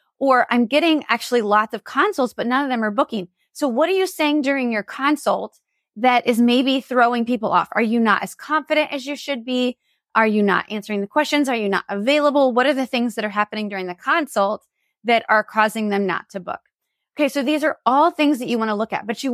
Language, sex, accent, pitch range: English, female, American, 215-280 Hz